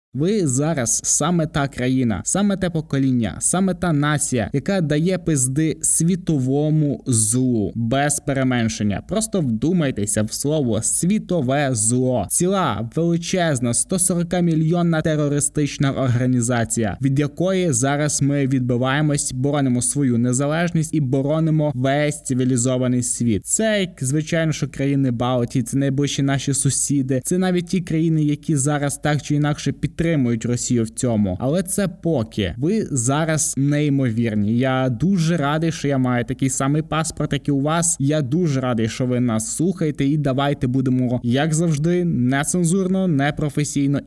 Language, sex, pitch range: Ukrainian, male, 125-160 Hz